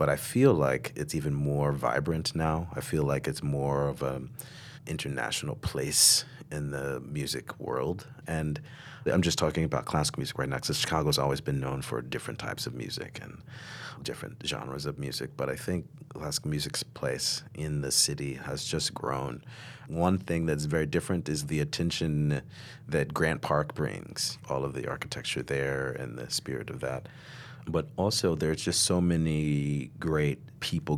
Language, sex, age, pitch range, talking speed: English, male, 40-59, 70-85 Hz, 170 wpm